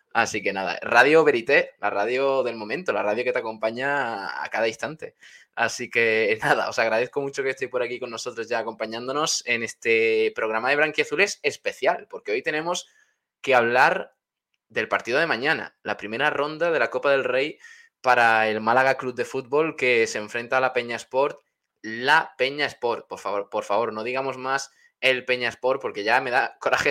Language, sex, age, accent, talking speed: Spanish, male, 20-39, Spanish, 190 wpm